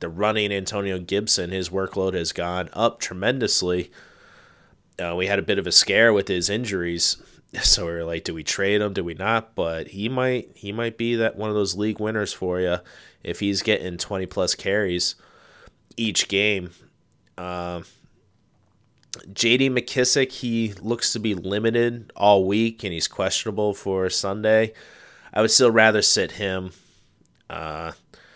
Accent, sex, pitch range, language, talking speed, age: American, male, 90-110 Hz, English, 160 wpm, 30-49